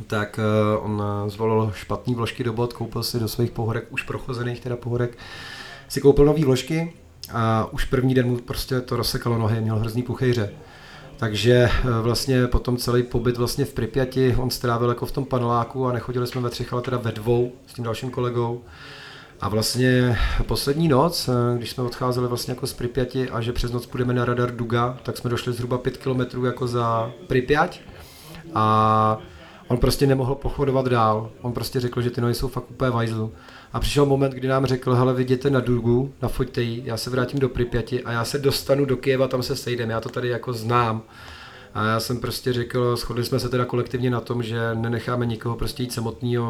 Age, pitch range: 30-49, 115-130 Hz